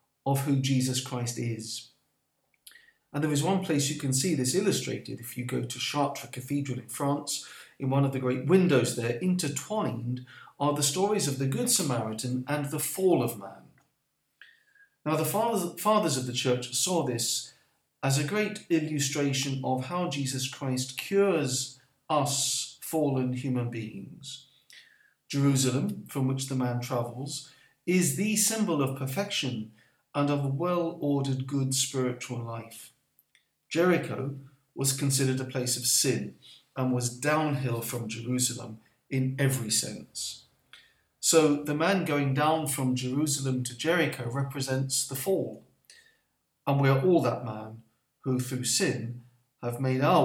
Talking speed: 145 wpm